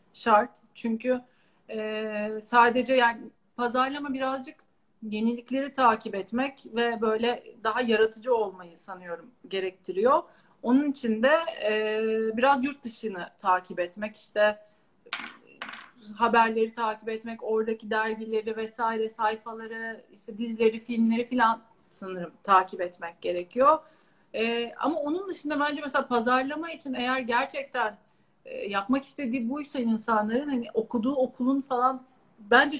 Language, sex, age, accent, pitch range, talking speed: Turkish, female, 40-59, native, 215-265 Hz, 110 wpm